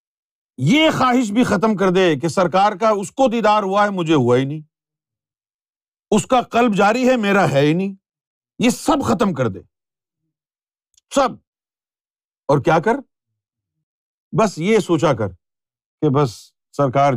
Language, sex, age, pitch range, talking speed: Urdu, male, 50-69, 125-210 Hz, 150 wpm